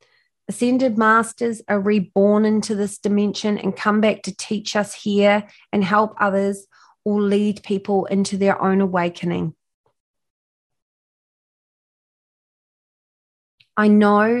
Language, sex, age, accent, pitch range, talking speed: English, female, 30-49, Australian, 185-210 Hz, 110 wpm